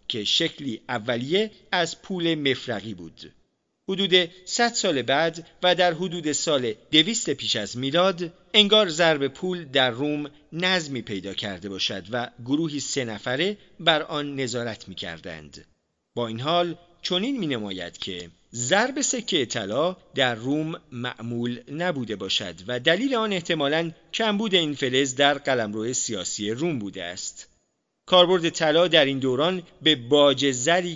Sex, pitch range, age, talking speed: male, 120-175 Hz, 40-59, 140 wpm